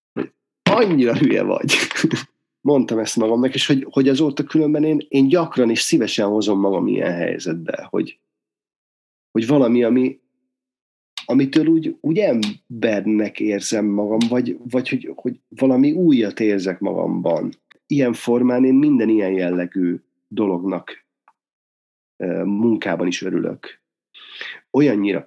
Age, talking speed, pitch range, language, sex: 30-49, 115 wpm, 95-130 Hz, Hungarian, male